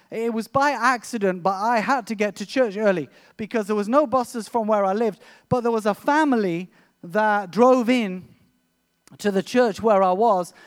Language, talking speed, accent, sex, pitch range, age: English, 195 wpm, British, male, 200-255 Hz, 30-49